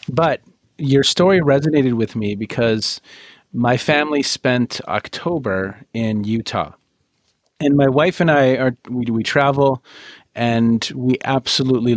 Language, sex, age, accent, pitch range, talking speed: English, male, 30-49, American, 105-140 Hz, 125 wpm